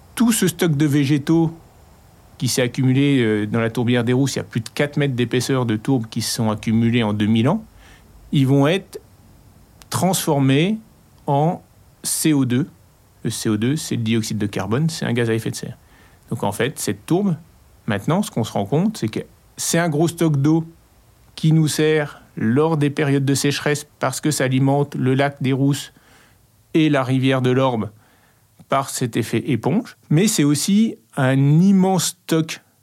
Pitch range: 115-155 Hz